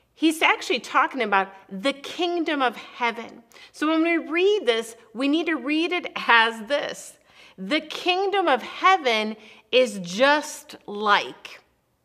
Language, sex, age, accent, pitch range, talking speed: English, female, 40-59, American, 220-325 Hz, 135 wpm